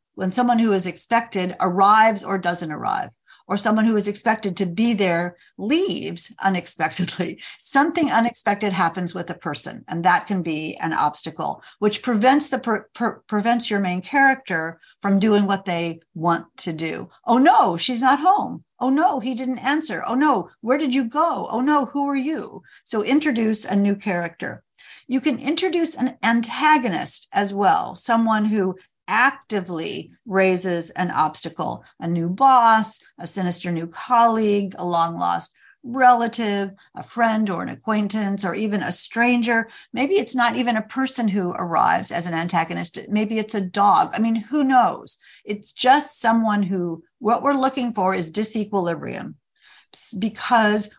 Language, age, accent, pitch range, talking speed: English, 50-69, American, 180-245 Hz, 160 wpm